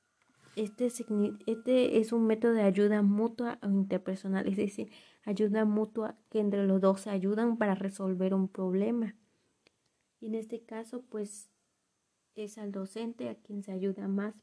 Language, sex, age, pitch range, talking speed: Spanish, female, 20-39, 195-225 Hz, 150 wpm